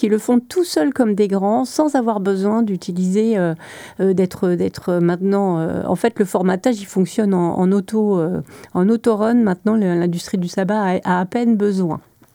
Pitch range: 180-215 Hz